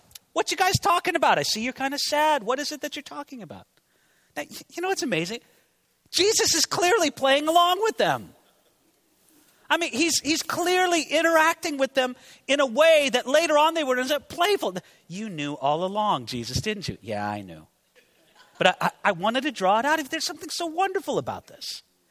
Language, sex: English, male